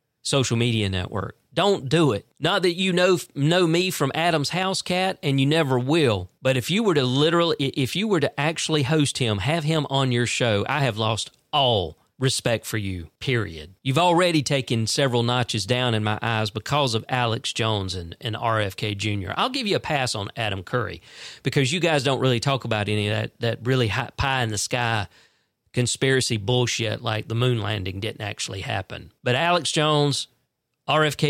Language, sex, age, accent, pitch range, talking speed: English, male, 40-59, American, 110-150 Hz, 195 wpm